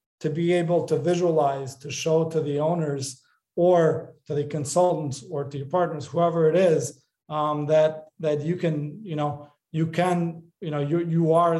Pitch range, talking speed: 150-175 Hz, 180 wpm